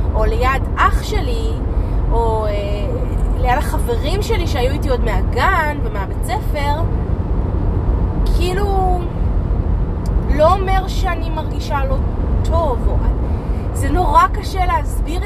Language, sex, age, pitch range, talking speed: Hebrew, female, 20-39, 95-105 Hz, 100 wpm